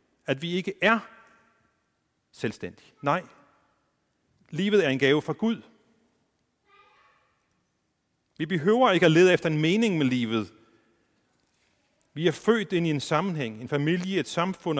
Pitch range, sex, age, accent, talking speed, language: 125-185 Hz, male, 40-59, native, 135 wpm, Danish